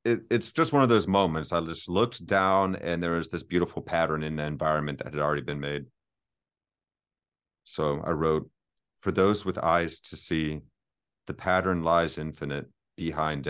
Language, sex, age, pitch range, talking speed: English, male, 40-59, 80-95 Hz, 170 wpm